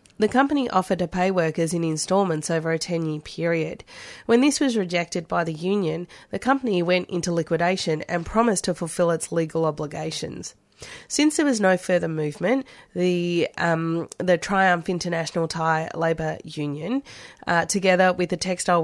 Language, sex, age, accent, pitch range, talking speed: English, female, 30-49, Australian, 165-195 Hz, 155 wpm